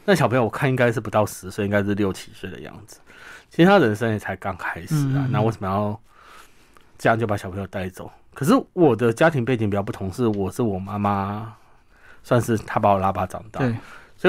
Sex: male